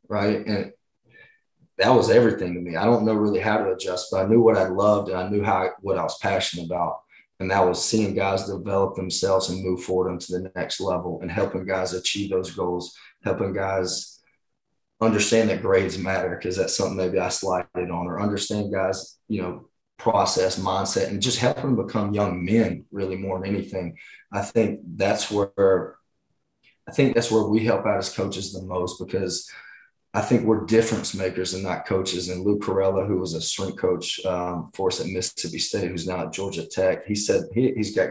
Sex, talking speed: male, 205 wpm